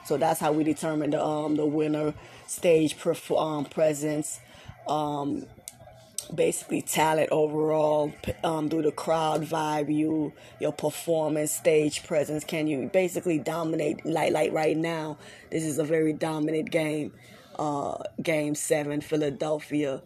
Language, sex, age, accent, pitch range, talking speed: English, female, 20-39, American, 150-185 Hz, 135 wpm